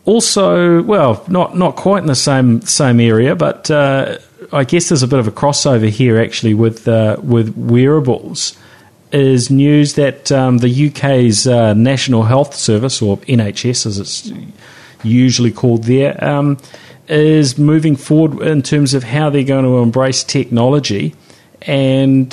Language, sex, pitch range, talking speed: English, male, 115-135 Hz, 155 wpm